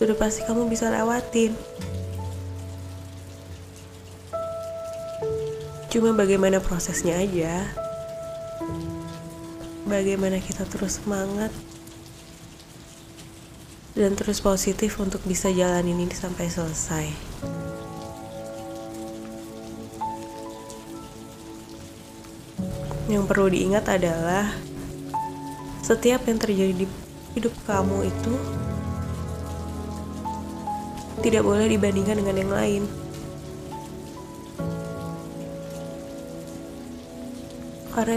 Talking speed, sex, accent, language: 65 wpm, female, native, Indonesian